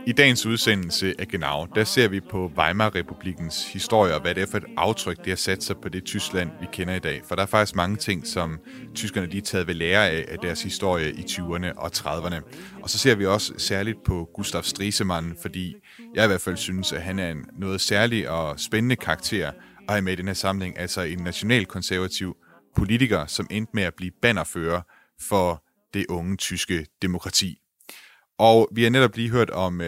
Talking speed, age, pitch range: 205 wpm, 30-49, 85-105 Hz